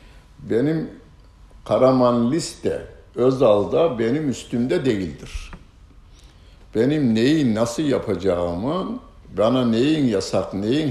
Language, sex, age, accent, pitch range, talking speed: Turkish, male, 60-79, native, 95-130 Hz, 85 wpm